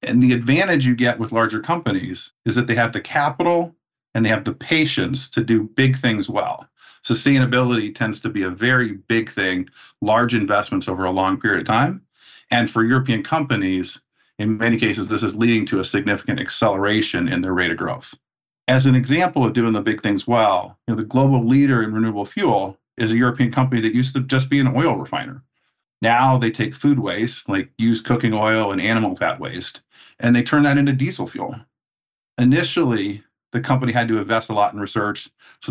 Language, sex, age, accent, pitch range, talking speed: English, male, 50-69, American, 105-130 Hz, 200 wpm